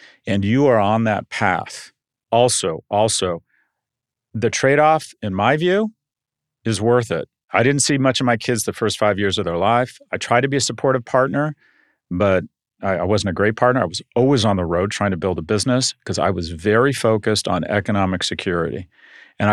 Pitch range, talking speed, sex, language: 95-125 Hz, 195 wpm, male, English